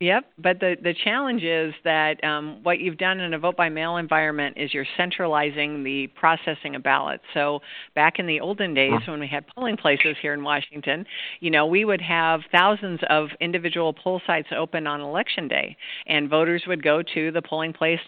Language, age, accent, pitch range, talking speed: English, 50-69, American, 150-165 Hz, 200 wpm